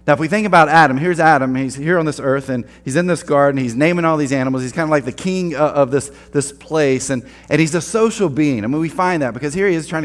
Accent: American